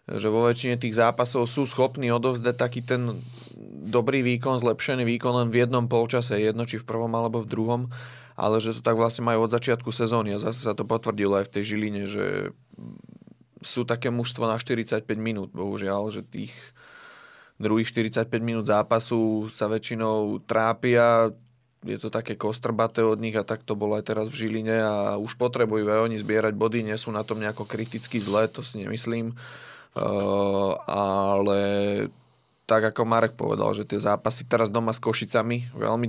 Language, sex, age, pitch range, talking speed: Slovak, male, 20-39, 105-120 Hz, 175 wpm